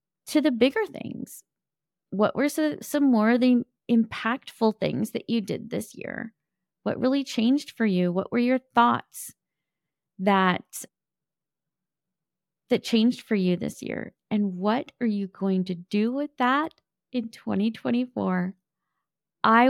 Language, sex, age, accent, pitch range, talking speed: English, female, 20-39, American, 205-260 Hz, 135 wpm